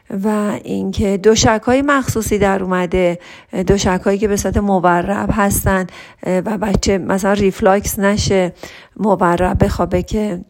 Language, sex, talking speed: Persian, female, 130 wpm